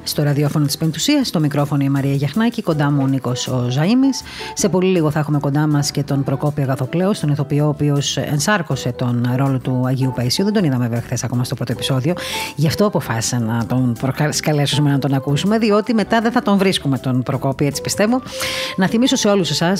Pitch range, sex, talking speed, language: 135-195 Hz, female, 205 wpm, Greek